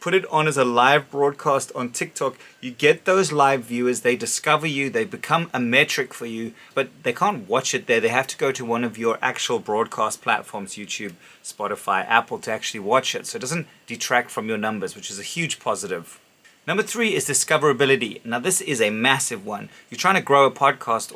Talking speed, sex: 215 wpm, male